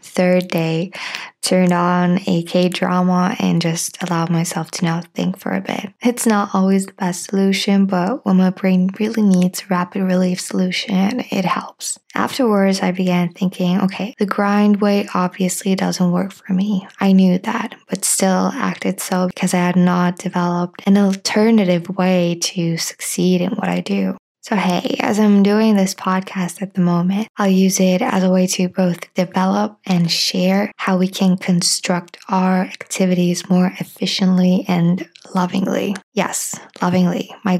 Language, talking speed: English, 165 wpm